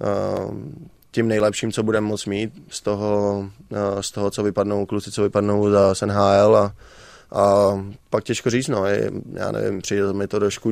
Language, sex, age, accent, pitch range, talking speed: Czech, male, 20-39, native, 100-105 Hz, 160 wpm